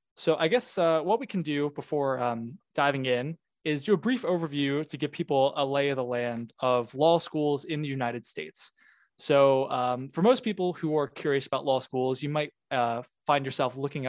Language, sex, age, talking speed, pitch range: English, male, 20-39, 210 wpm, 130-175 Hz